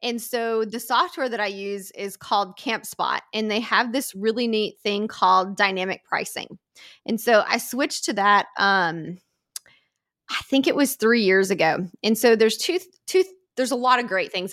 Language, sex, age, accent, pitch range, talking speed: English, female, 20-39, American, 195-250 Hz, 185 wpm